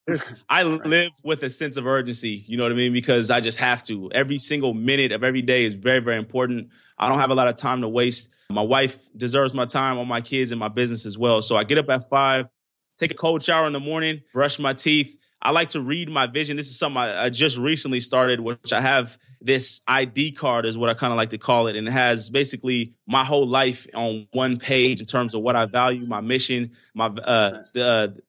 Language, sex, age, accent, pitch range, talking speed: English, male, 20-39, American, 115-140 Hz, 245 wpm